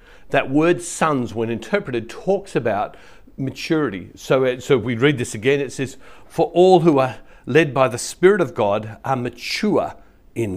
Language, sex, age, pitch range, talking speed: English, male, 60-79, 110-140 Hz, 170 wpm